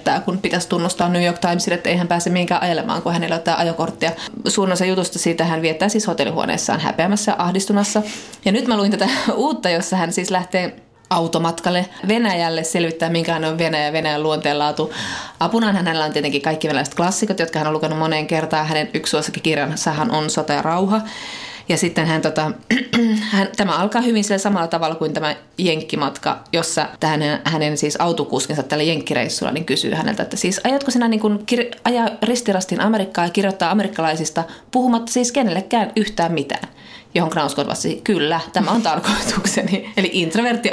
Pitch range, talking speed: 160-200 Hz, 170 wpm